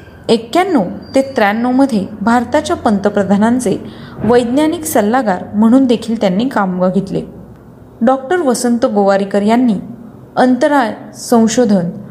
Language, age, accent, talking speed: Marathi, 30-49, native, 90 wpm